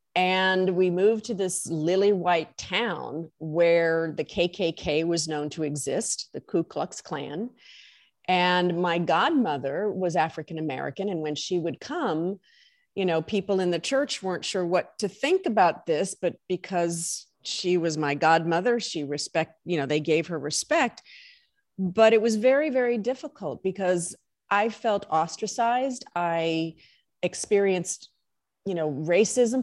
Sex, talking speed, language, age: female, 145 wpm, English, 40-59